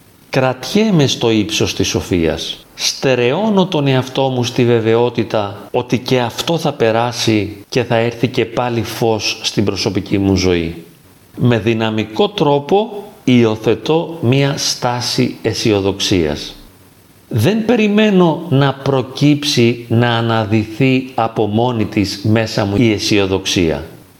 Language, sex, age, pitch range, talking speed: Greek, male, 40-59, 105-135 Hz, 115 wpm